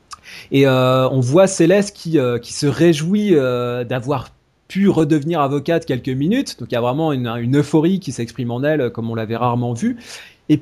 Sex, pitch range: male, 115-165 Hz